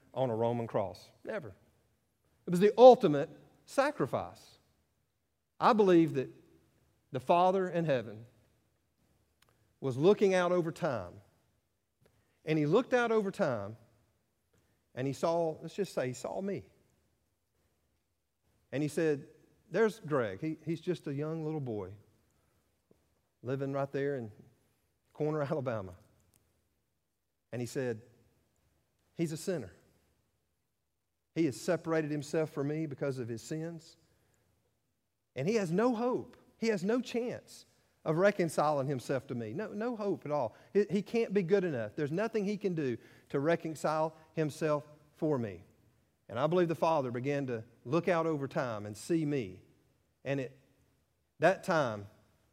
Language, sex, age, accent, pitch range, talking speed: English, male, 50-69, American, 110-165 Hz, 145 wpm